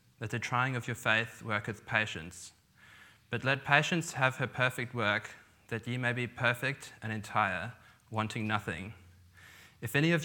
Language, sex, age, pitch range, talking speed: English, male, 20-39, 105-125 Hz, 160 wpm